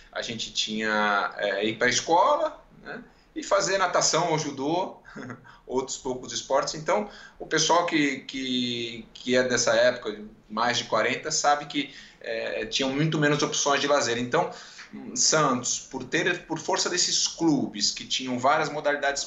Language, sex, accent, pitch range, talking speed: Portuguese, male, Brazilian, 115-145 Hz, 155 wpm